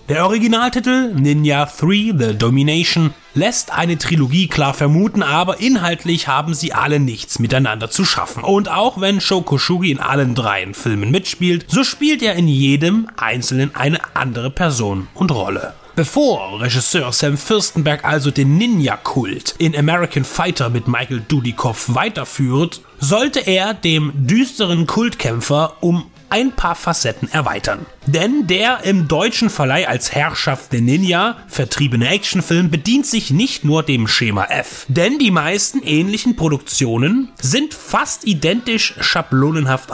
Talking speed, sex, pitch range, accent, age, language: 140 wpm, male, 135-200 Hz, German, 30-49, German